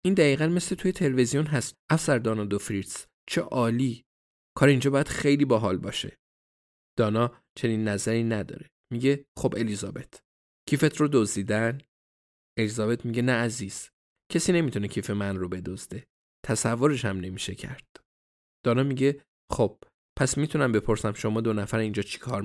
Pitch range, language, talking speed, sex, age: 105-135 Hz, Persian, 140 wpm, male, 20-39